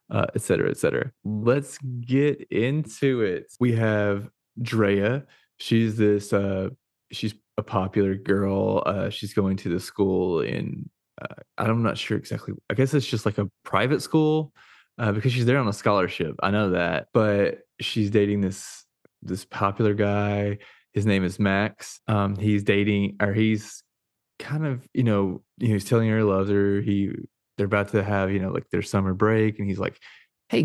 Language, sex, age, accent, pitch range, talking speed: English, male, 20-39, American, 100-115 Hz, 175 wpm